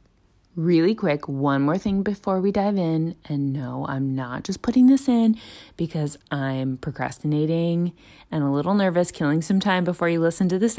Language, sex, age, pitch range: English, female, 20-39, 160-210 Hz